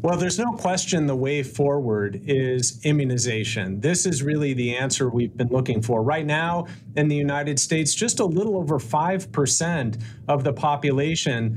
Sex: male